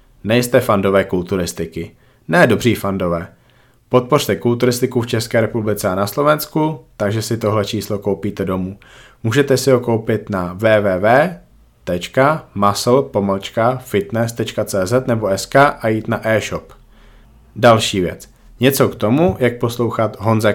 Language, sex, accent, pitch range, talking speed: Czech, male, native, 100-125 Hz, 115 wpm